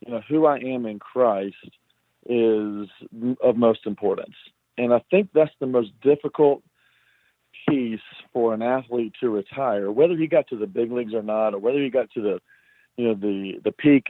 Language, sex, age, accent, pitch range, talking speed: English, male, 40-59, American, 110-130 Hz, 185 wpm